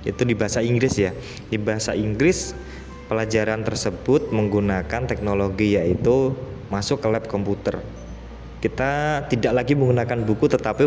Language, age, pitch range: Indonesian, 20-39, 105-130 Hz